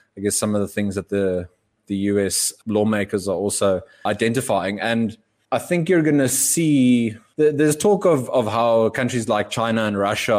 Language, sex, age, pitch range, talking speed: English, male, 20-39, 100-115 Hz, 185 wpm